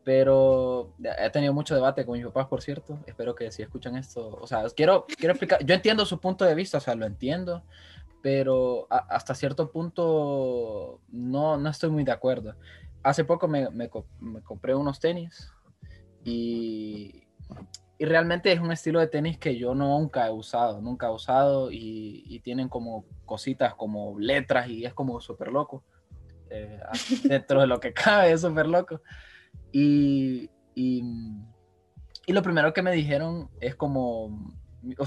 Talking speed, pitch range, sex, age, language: 165 wpm, 110-145 Hz, male, 20-39, Spanish